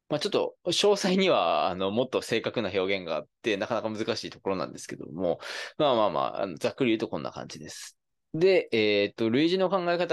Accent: native